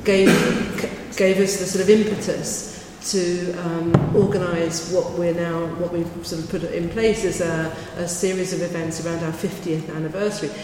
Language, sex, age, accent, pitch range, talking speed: English, female, 40-59, British, 170-195 Hz, 170 wpm